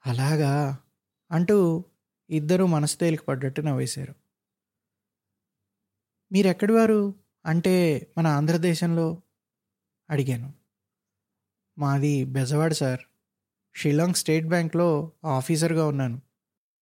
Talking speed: 70 wpm